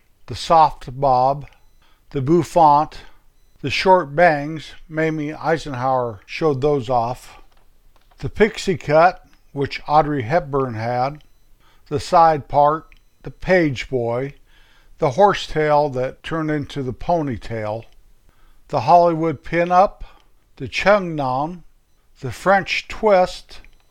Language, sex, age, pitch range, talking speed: English, male, 60-79, 140-170 Hz, 105 wpm